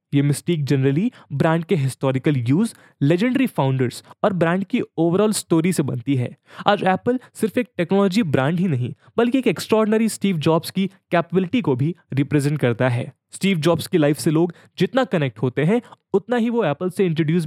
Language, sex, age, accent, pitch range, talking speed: English, male, 20-39, Indian, 140-200 Hz, 180 wpm